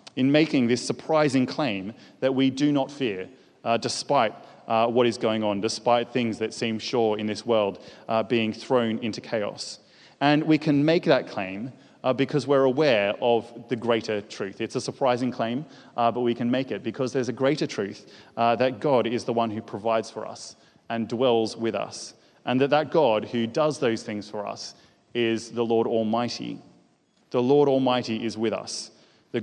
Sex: male